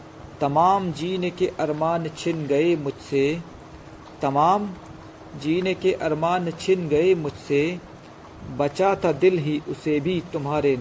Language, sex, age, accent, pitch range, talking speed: Hindi, male, 50-69, native, 140-170 Hz, 115 wpm